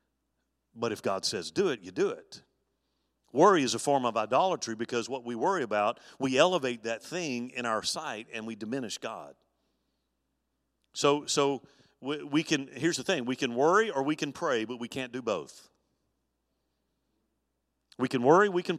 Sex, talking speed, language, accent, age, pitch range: male, 180 wpm, English, American, 50-69, 115-170 Hz